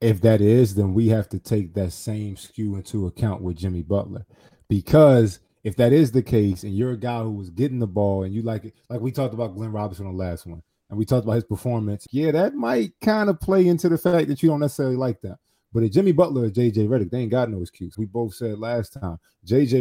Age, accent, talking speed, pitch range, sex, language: 20-39, American, 255 wpm, 100-125 Hz, male, English